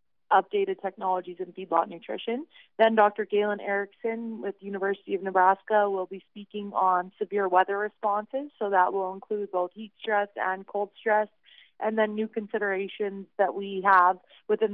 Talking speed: 160 wpm